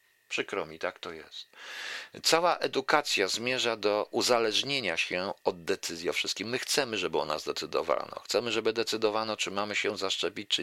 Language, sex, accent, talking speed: Polish, male, native, 165 wpm